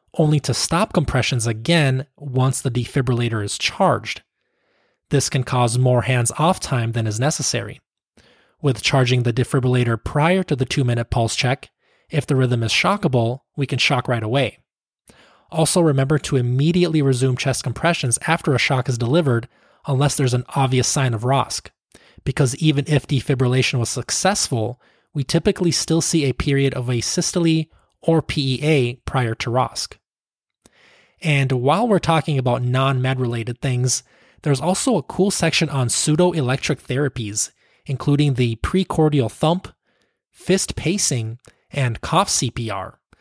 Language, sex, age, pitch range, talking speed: English, male, 20-39, 125-150 Hz, 145 wpm